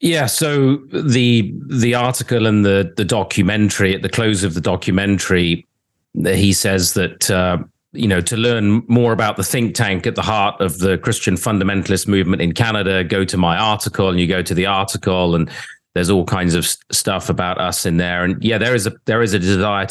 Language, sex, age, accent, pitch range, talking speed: English, male, 30-49, British, 90-110 Hz, 205 wpm